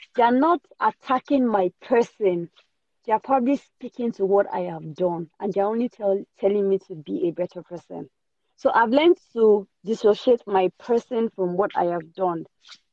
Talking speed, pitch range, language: 175 wpm, 185-240 Hz, English